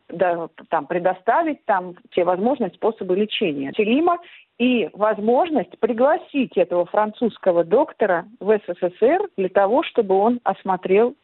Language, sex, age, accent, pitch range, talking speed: Russian, female, 40-59, native, 180-240 Hz, 115 wpm